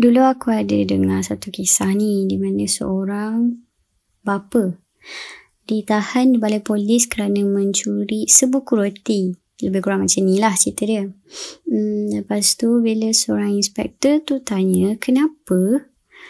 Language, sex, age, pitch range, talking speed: Malay, male, 20-39, 190-225 Hz, 130 wpm